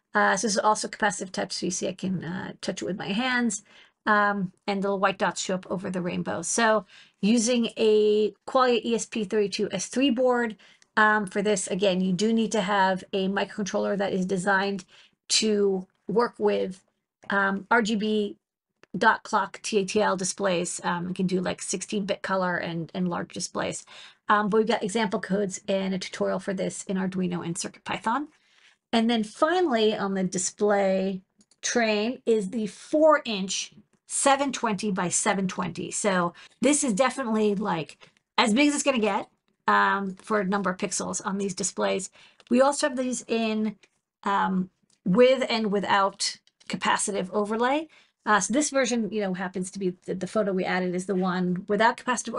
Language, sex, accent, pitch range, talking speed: English, female, American, 190-225 Hz, 170 wpm